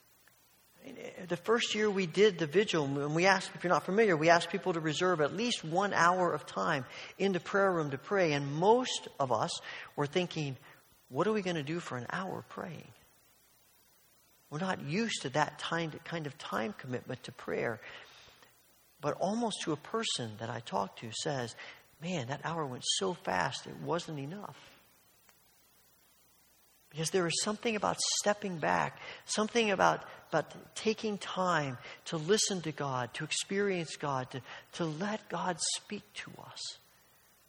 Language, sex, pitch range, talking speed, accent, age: English, male, 145-195 Hz, 165 wpm, American, 50-69